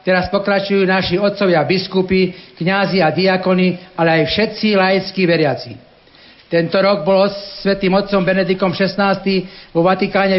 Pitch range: 175-195 Hz